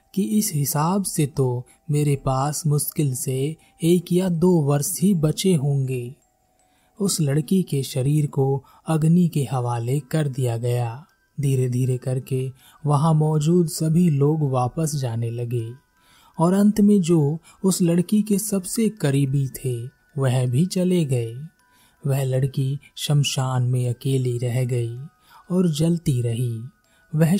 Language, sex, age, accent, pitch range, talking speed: Hindi, male, 30-49, native, 130-170 Hz, 135 wpm